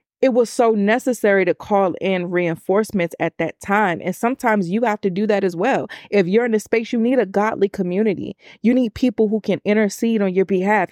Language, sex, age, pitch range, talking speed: English, female, 30-49, 190-230 Hz, 215 wpm